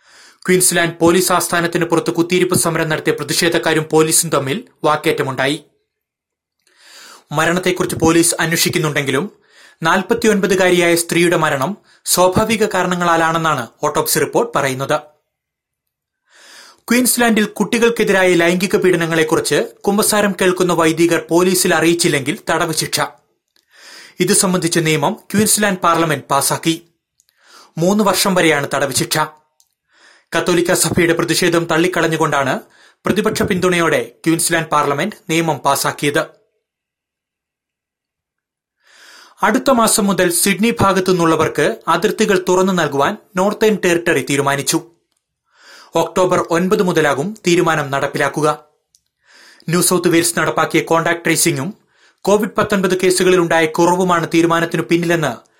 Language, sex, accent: Malayalam, male, native